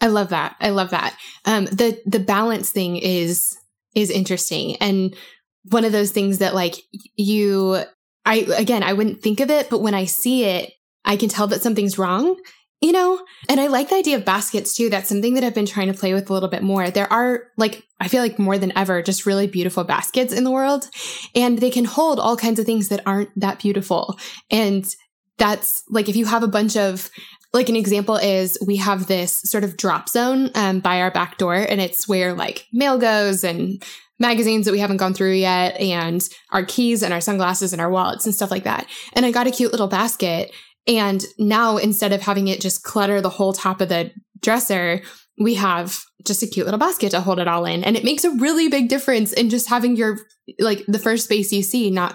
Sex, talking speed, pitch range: female, 225 wpm, 190-230 Hz